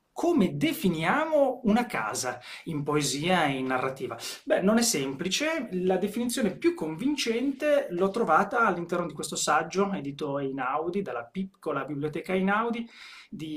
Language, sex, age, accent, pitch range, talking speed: Italian, male, 30-49, native, 150-210 Hz, 140 wpm